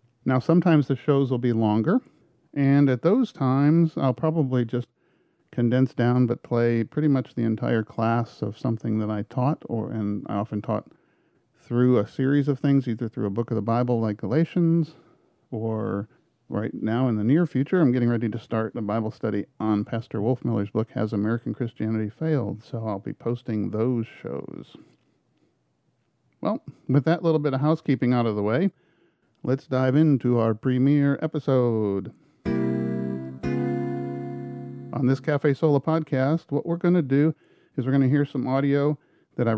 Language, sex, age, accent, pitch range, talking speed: English, male, 40-59, American, 115-145 Hz, 170 wpm